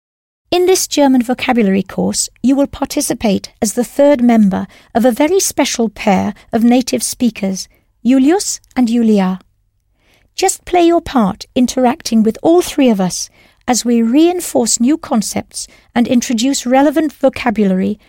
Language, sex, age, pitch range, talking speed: English, female, 60-79, 200-270 Hz, 140 wpm